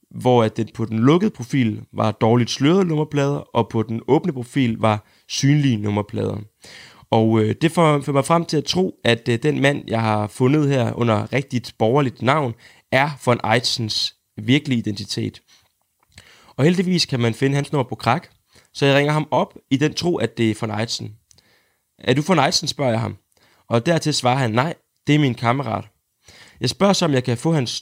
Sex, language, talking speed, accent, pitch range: male, Danish, 190 wpm, native, 110-140 Hz